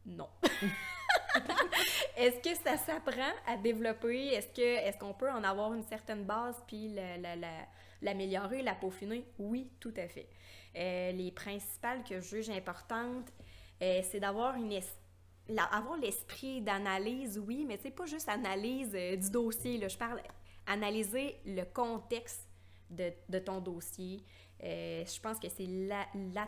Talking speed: 155 wpm